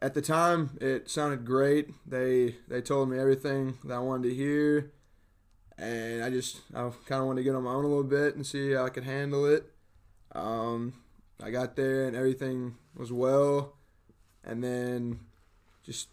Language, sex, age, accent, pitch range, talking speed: English, male, 20-39, American, 120-135 Hz, 180 wpm